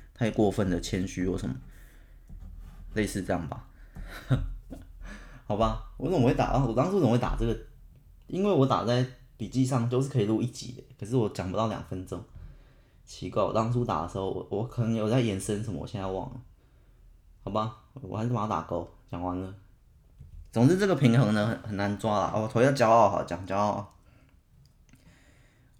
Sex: male